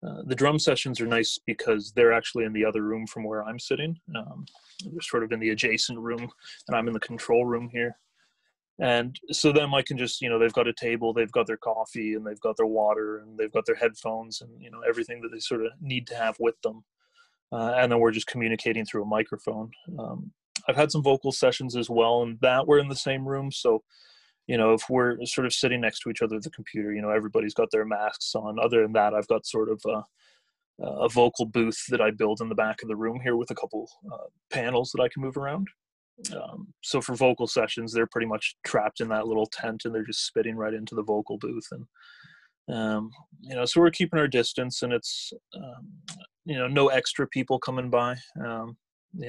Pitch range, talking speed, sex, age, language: 110-135 Hz, 230 wpm, male, 20-39, English